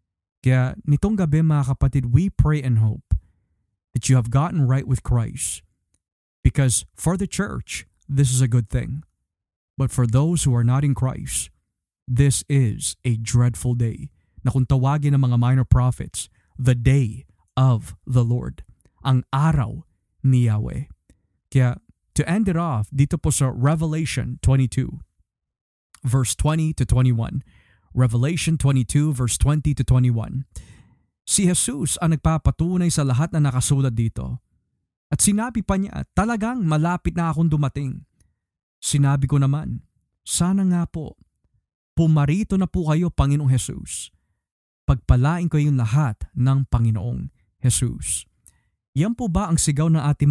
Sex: male